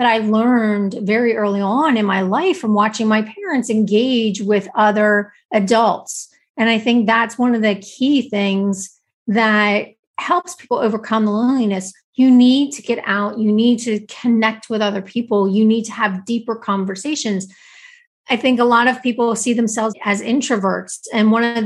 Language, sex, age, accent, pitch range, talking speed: English, female, 30-49, American, 210-255 Hz, 175 wpm